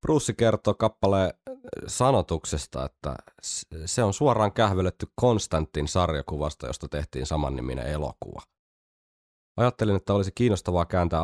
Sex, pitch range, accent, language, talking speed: male, 75-95 Hz, native, Finnish, 105 wpm